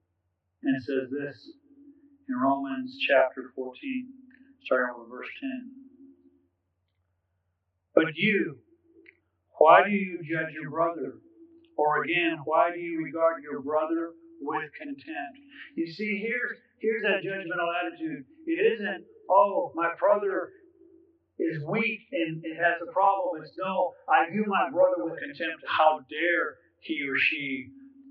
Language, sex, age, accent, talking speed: English, male, 50-69, American, 130 wpm